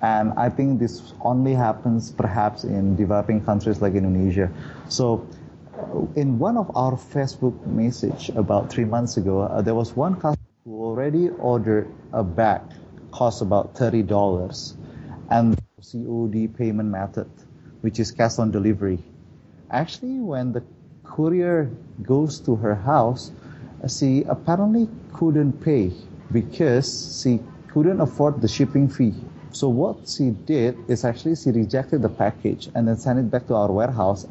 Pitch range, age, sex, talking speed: 110-135 Hz, 30-49, male, 145 wpm